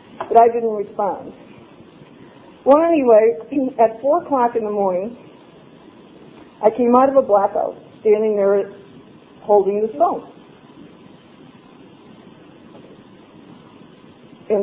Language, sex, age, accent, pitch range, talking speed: English, female, 50-69, American, 200-260 Hz, 100 wpm